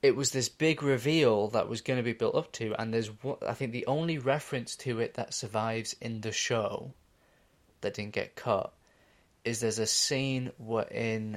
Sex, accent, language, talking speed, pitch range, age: male, British, English, 195 wpm, 105-125 Hz, 20-39